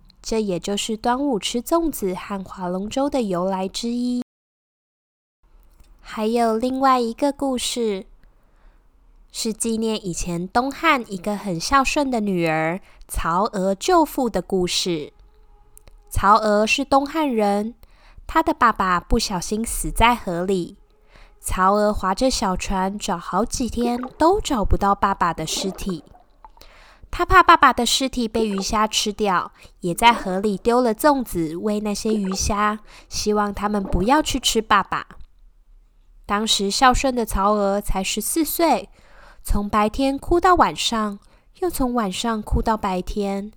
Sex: female